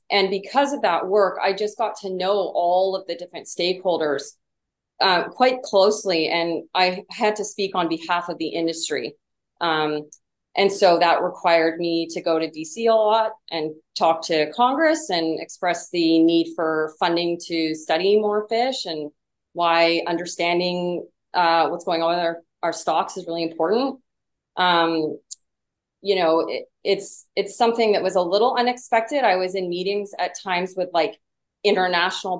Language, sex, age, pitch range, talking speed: English, female, 30-49, 165-200 Hz, 165 wpm